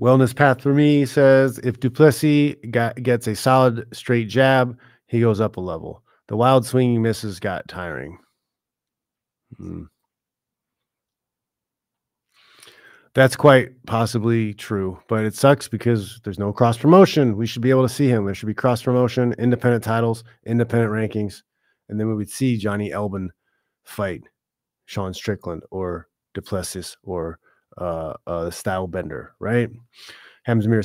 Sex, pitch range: male, 105-130 Hz